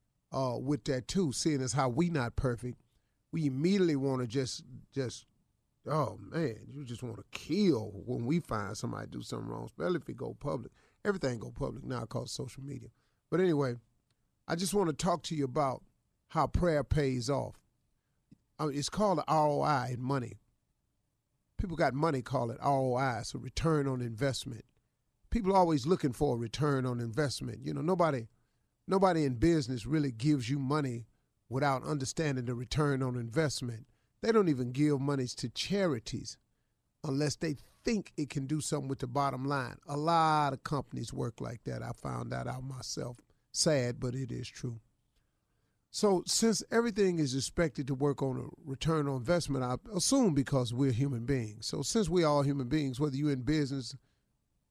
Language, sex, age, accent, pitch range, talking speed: English, male, 40-59, American, 125-155 Hz, 175 wpm